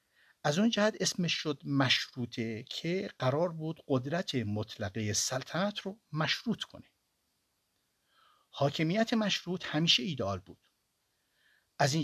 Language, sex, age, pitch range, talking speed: Persian, male, 50-69, 105-150 Hz, 110 wpm